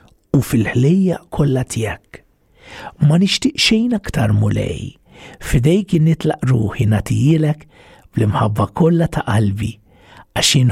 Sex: male